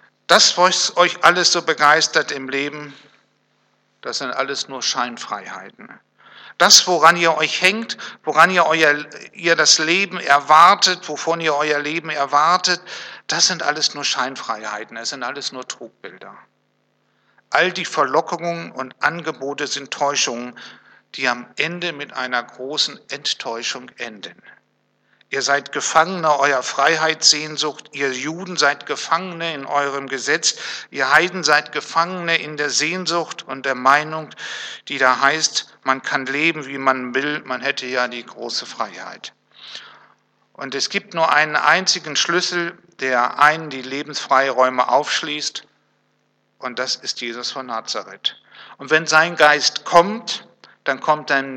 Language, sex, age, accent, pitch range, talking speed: German, male, 60-79, German, 135-165 Hz, 135 wpm